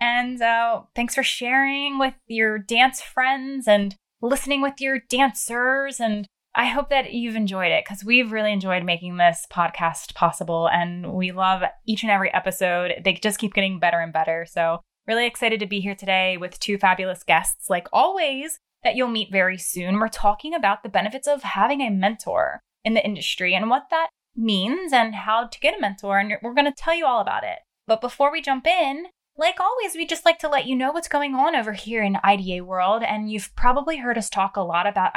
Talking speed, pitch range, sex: 210 wpm, 185-255 Hz, female